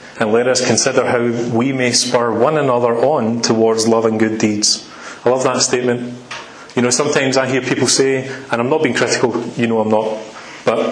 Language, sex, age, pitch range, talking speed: English, male, 30-49, 115-150 Hz, 205 wpm